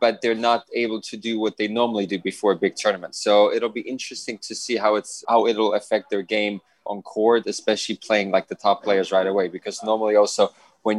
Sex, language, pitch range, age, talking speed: male, English, 100-115 Hz, 20-39, 225 wpm